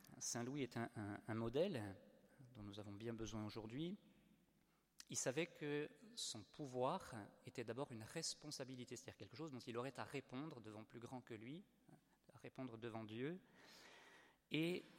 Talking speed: 155 wpm